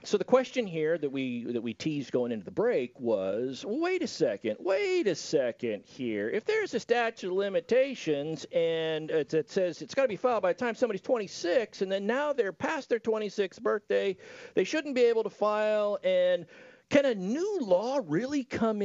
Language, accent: English, American